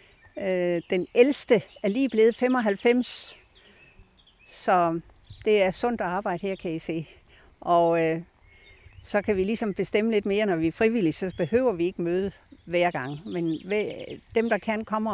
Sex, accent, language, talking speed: female, native, Danish, 155 wpm